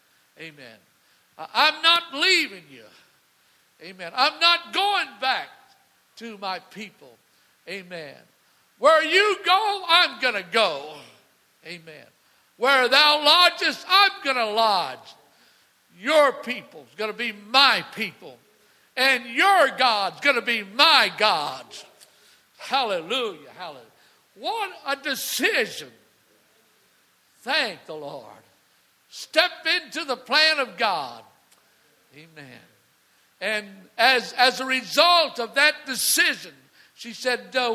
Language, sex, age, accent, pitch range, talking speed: English, male, 60-79, American, 230-300 Hz, 110 wpm